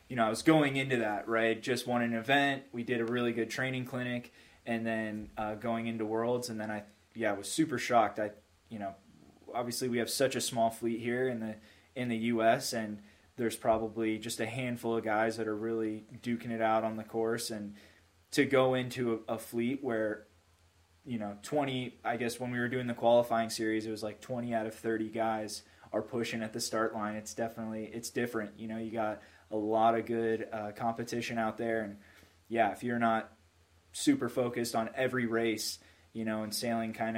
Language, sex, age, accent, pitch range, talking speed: English, male, 20-39, American, 110-120 Hz, 210 wpm